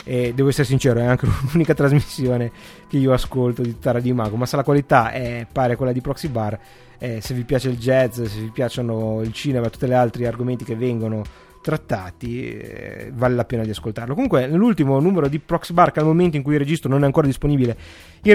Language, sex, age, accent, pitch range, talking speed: Italian, male, 30-49, native, 115-155 Hz, 220 wpm